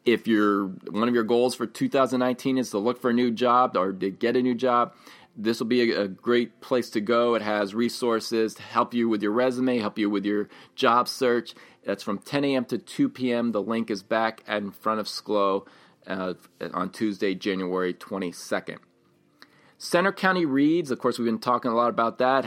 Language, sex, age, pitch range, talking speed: English, male, 30-49, 105-125 Hz, 200 wpm